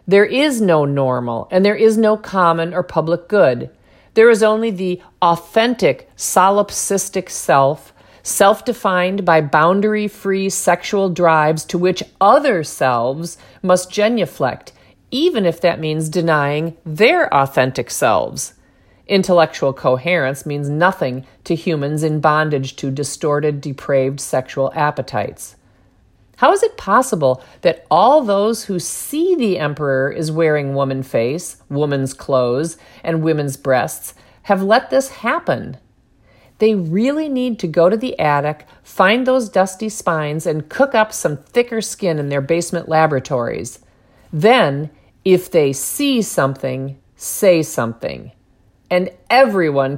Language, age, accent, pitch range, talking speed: English, 40-59, American, 135-195 Hz, 130 wpm